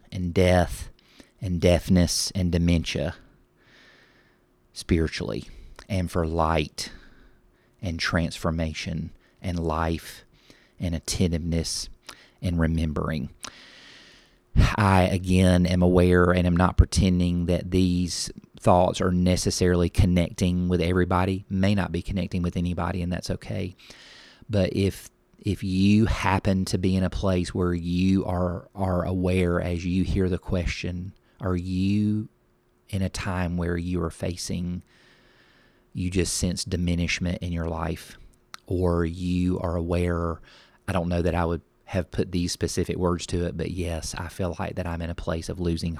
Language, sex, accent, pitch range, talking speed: English, male, American, 85-95 Hz, 140 wpm